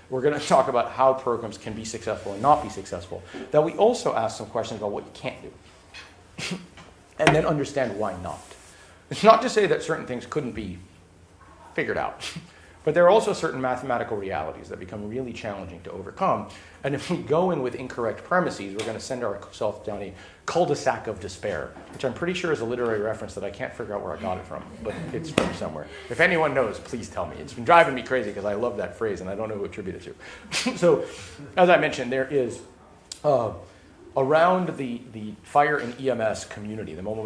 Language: English